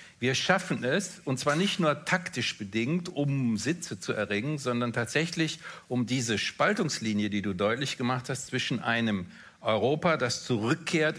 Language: German